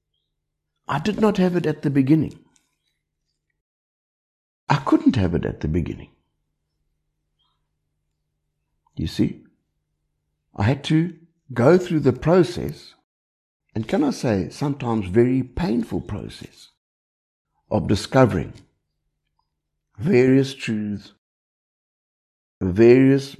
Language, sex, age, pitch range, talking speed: English, male, 60-79, 85-140 Hz, 95 wpm